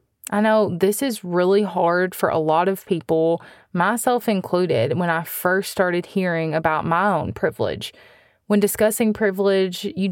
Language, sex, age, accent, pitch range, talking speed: English, female, 20-39, American, 180-215 Hz, 155 wpm